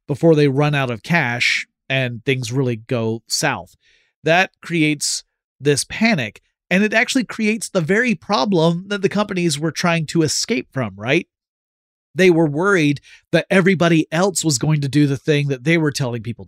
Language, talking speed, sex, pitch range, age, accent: English, 175 wpm, male, 130-175 Hz, 30-49, American